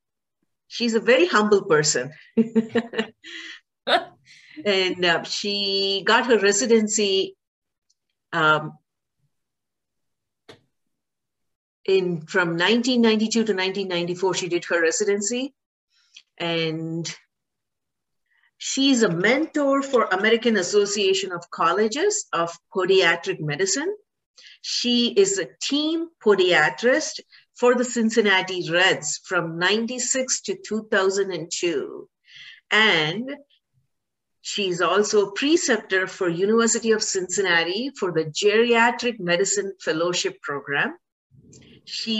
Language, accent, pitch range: English, Indian, 180-245 Hz